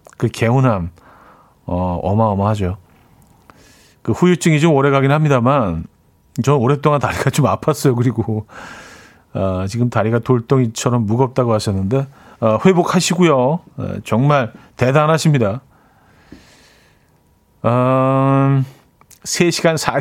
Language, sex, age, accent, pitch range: Korean, male, 40-59, native, 110-145 Hz